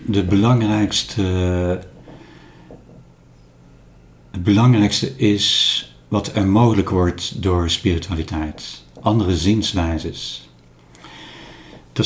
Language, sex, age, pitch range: Dutch, male, 60-79, 80-105 Hz